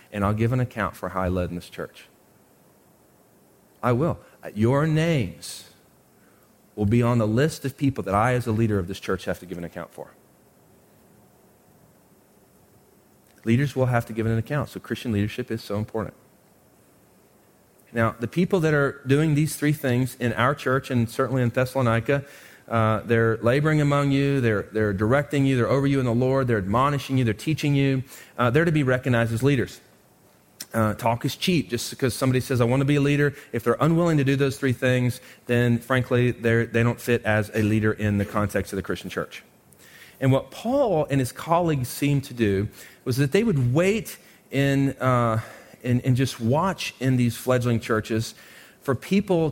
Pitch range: 115-140 Hz